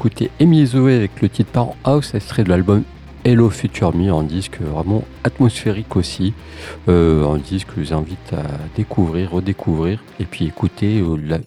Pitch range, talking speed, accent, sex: 85-110 Hz, 165 wpm, French, male